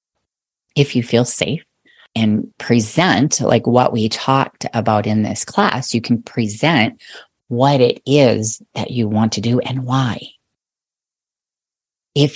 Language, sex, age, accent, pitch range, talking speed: English, female, 30-49, American, 110-130 Hz, 135 wpm